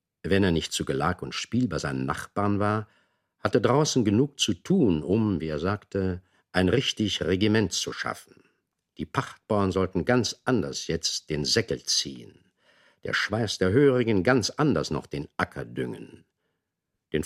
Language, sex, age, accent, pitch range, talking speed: German, male, 60-79, German, 85-115 Hz, 155 wpm